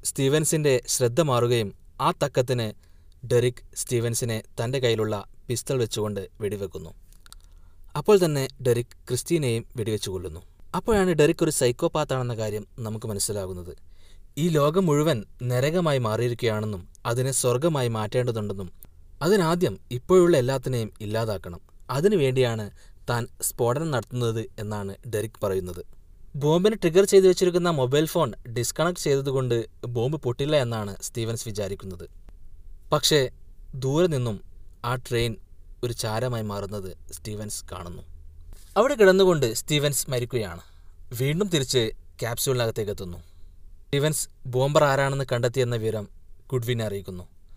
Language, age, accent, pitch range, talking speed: Malayalam, 20-39, native, 100-135 Hz, 105 wpm